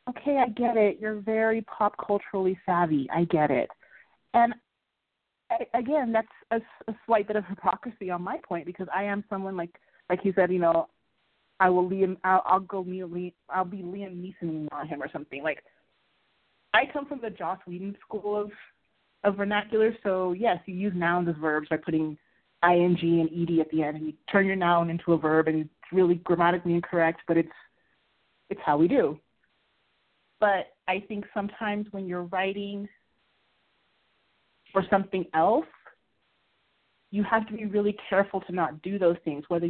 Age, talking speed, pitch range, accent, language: 30-49, 175 wpm, 170-210 Hz, American, English